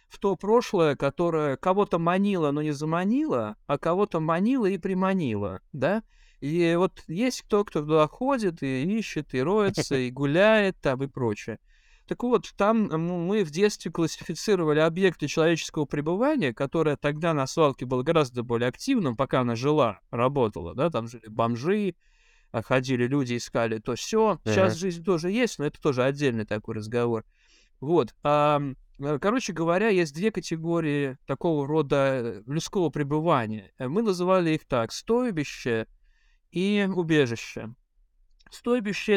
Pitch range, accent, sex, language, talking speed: 130-185 Hz, native, male, Russian, 140 wpm